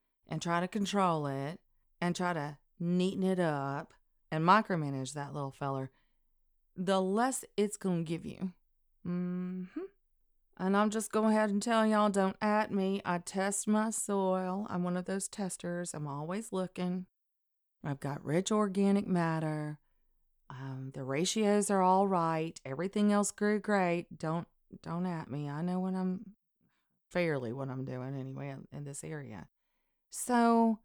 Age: 30-49